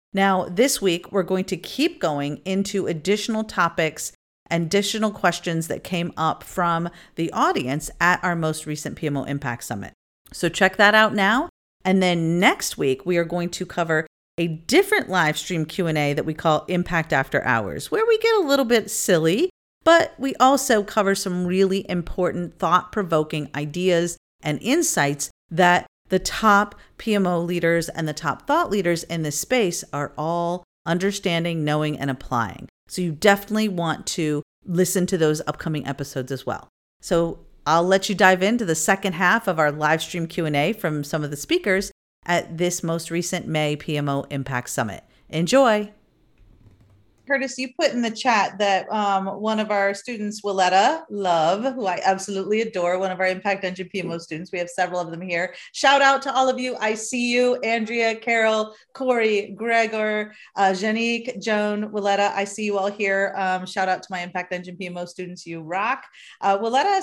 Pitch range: 165-215 Hz